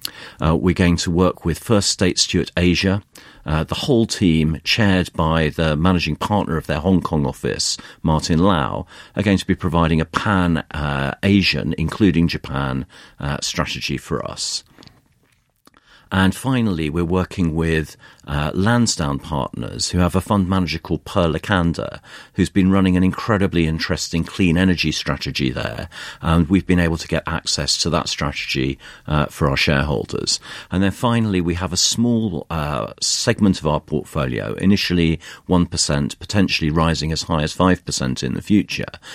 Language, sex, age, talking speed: English, male, 50-69, 160 wpm